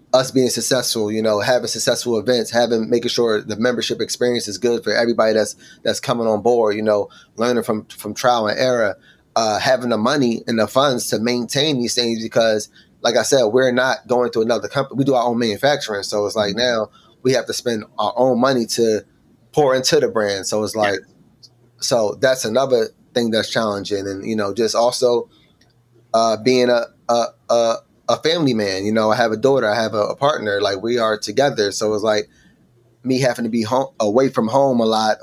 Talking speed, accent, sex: 210 wpm, American, male